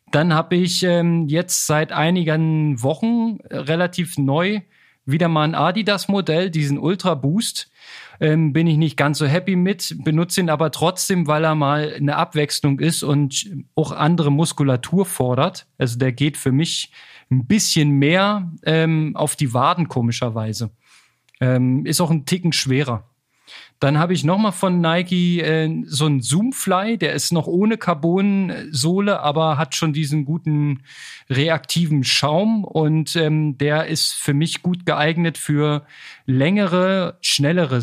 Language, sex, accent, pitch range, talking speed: German, male, German, 140-170 Hz, 145 wpm